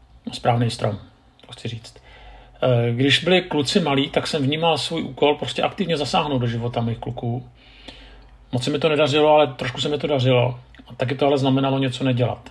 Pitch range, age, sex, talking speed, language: 120-140 Hz, 50-69, male, 180 wpm, Czech